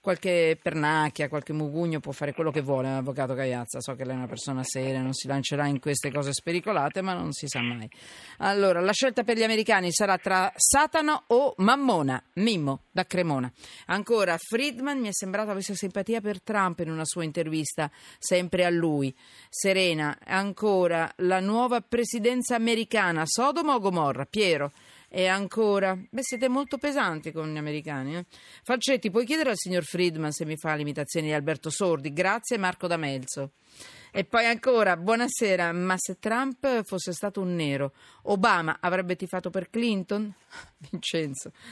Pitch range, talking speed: 155-210 Hz, 165 wpm